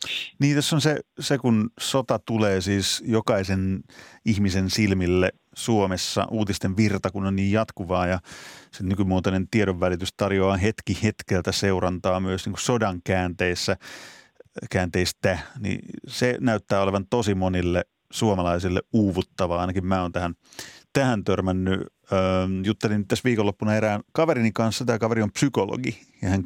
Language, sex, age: Finnish, male, 30-49